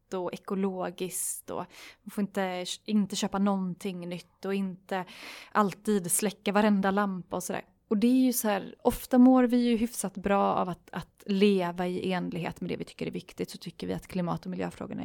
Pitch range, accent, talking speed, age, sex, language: 185-235 Hz, native, 195 wpm, 20-39, female, Swedish